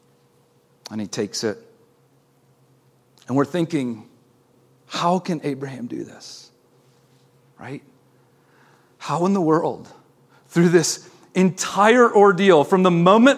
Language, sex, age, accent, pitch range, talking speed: English, male, 40-59, American, 165-210 Hz, 110 wpm